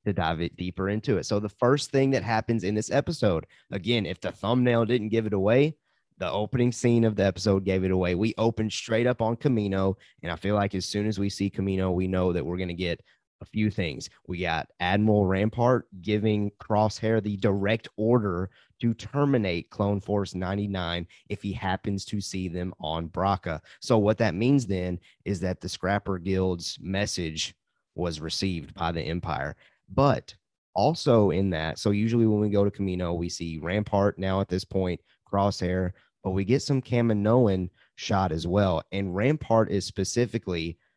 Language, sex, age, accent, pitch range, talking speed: English, male, 30-49, American, 90-115 Hz, 185 wpm